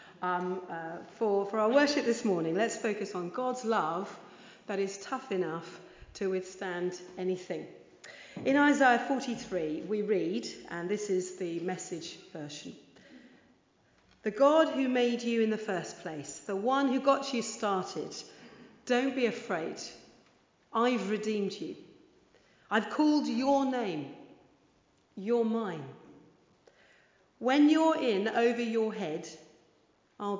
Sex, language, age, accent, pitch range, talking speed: female, English, 40-59, British, 185-255 Hz, 130 wpm